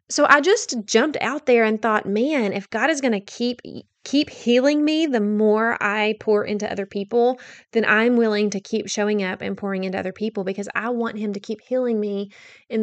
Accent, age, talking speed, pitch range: American, 20-39, 215 wpm, 205-250 Hz